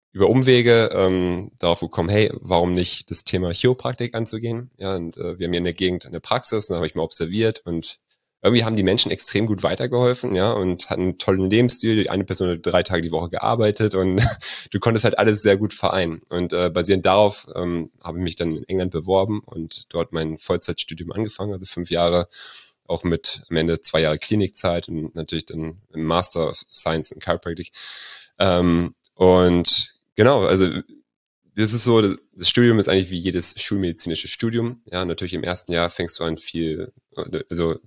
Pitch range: 85-105 Hz